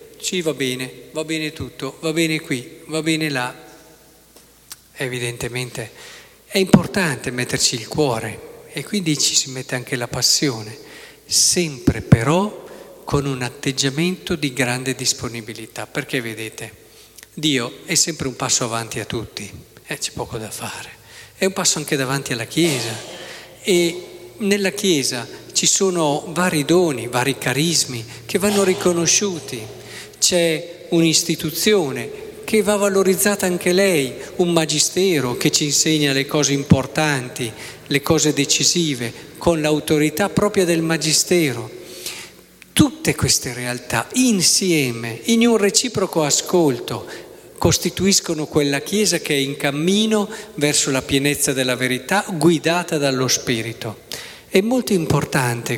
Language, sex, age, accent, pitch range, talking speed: Italian, male, 40-59, native, 130-180 Hz, 125 wpm